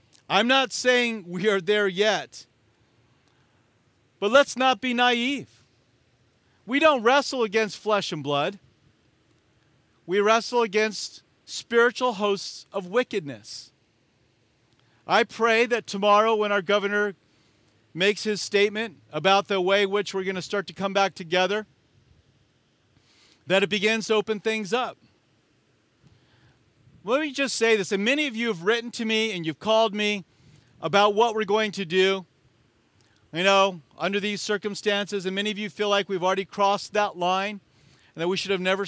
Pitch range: 130-210 Hz